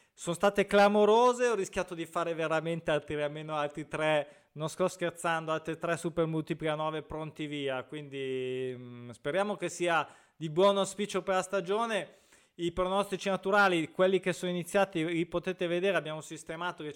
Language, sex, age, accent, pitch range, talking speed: Italian, male, 20-39, native, 150-185 Hz, 155 wpm